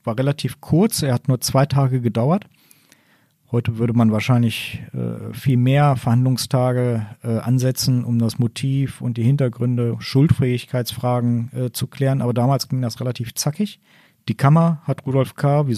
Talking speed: 155 wpm